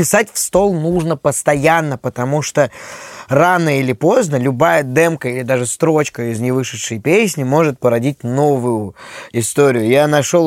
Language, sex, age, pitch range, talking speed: Russian, male, 20-39, 130-165 Hz, 140 wpm